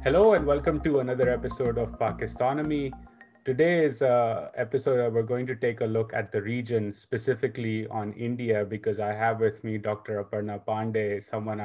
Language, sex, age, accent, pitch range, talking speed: English, male, 30-49, Indian, 110-130 Hz, 175 wpm